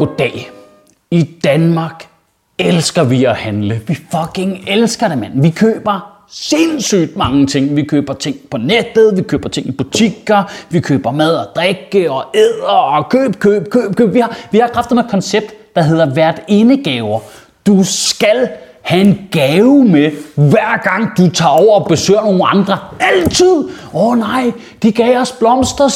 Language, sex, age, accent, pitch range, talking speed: Danish, male, 30-49, native, 175-250 Hz, 165 wpm